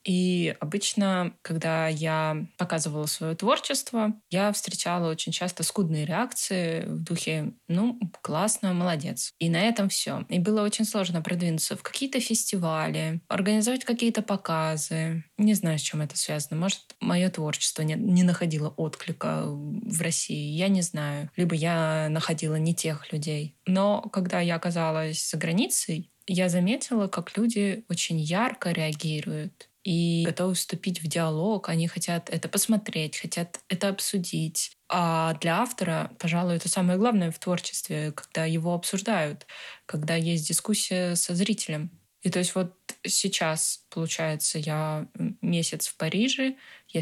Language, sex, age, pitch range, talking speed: Russian, female, 20-39, 160-195 Hz, 140 wpm